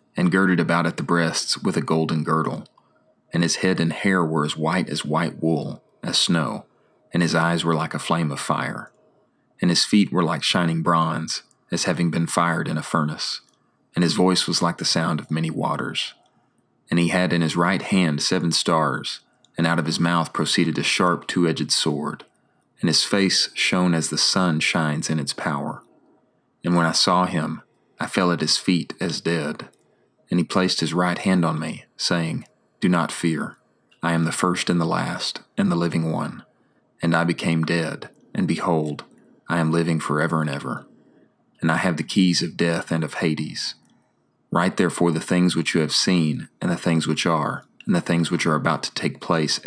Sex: male